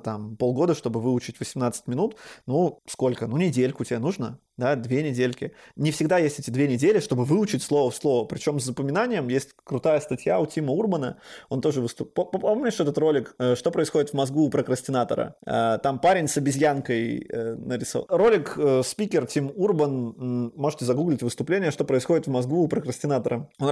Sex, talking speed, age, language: male, 165 wpm, 20-39, Russian